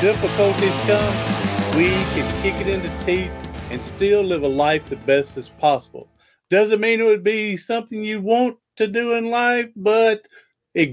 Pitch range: 140-205 Hz